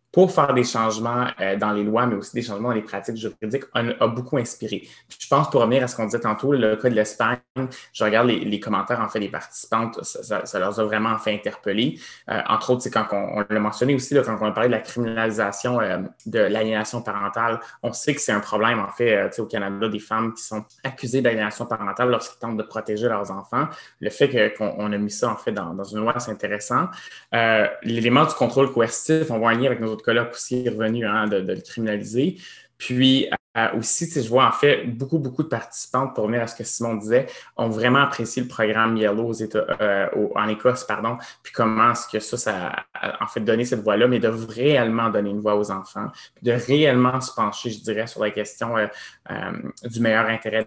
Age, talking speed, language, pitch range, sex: 20-39, 235 wpm, French, 105-125 Hz, male